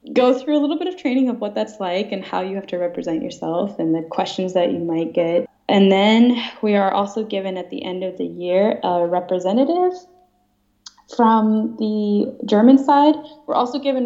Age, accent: 20-39, American